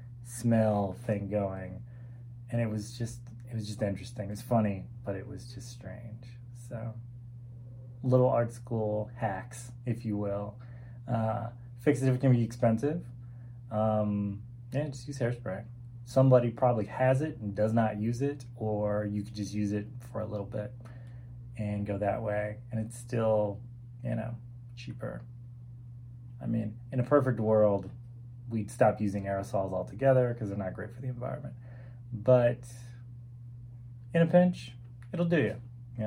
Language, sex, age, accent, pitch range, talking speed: English, male, 20-39, American, 110-120 Hz, 160 wpm